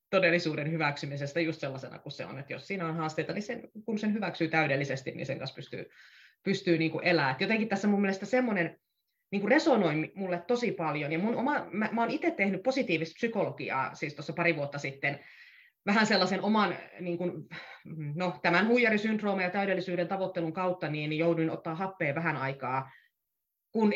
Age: 30-49